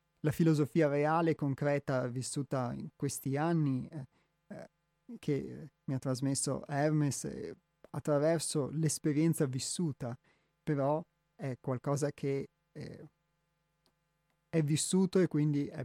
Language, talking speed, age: Italian, 110 wpm, 30-49